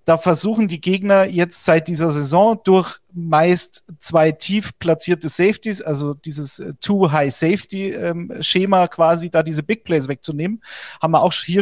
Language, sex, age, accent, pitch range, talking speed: German, male, 40-59, German, 155-185 Hz, 145 wpm